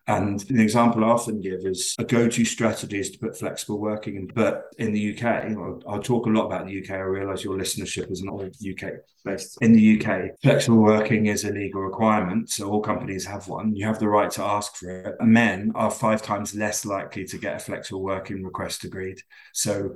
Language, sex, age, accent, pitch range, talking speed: English, male, 30-49, British, 95-110 Hz, 210 wpm